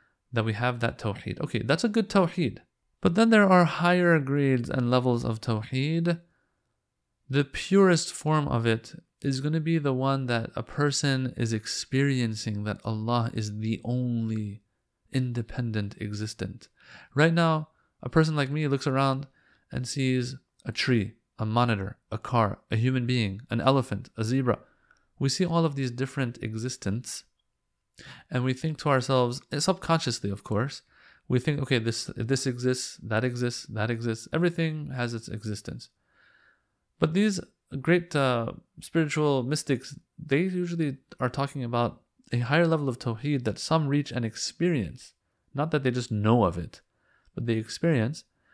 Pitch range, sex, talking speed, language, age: 115-150 Hz, male, 155 wpm, English, 30-49